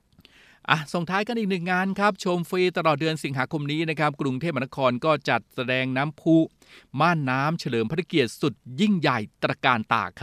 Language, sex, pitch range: Thai, male, 120-155 Hz